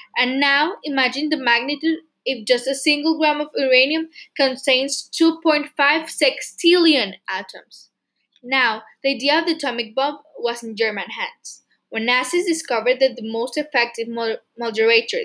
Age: 10-29